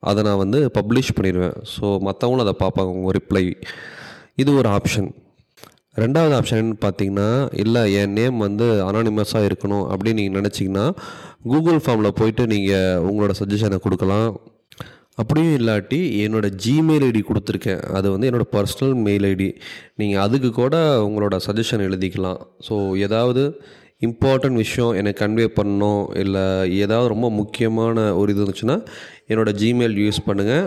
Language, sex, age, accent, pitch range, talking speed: English, male, 30-49, Indian, 100-120 Hz, 100 wpm